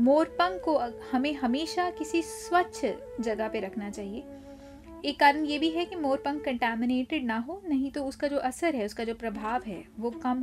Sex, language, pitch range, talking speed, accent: female, Hindi, 235-305 Hz, 185 wpm, native